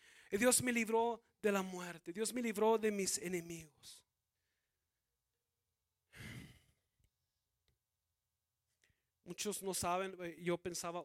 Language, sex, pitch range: Spanish, male, 150-185 Hz